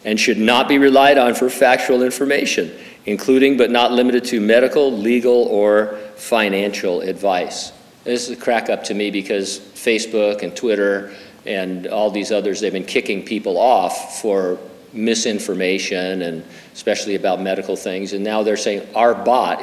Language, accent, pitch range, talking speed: English, American, 105-135 Hz, 160 wpm